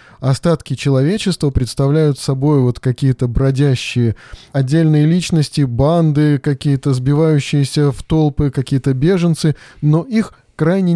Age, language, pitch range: 20-39, Russian, 130-160 Hz